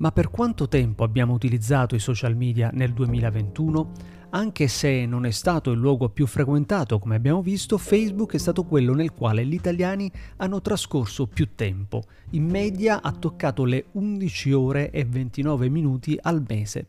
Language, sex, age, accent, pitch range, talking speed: Italian, male, 40-59, native, 115-155 Hz, 165 wpm